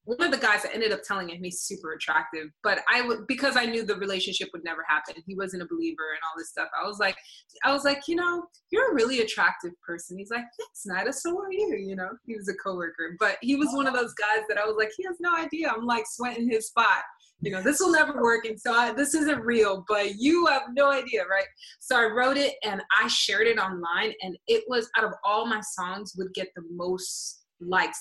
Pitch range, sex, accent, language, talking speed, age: 180-235 Hz, female, American, English, 255 wpm, 20-39